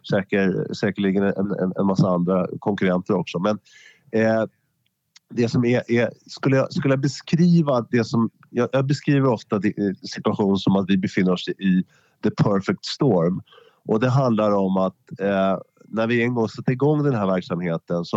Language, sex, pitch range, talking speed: Swedish, male, 95-125 Hz, 175 wpm